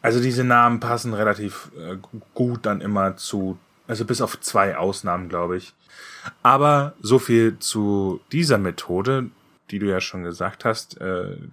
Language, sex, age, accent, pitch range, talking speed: German, male, 10-29, German, 100-130 Hz, 155 wpm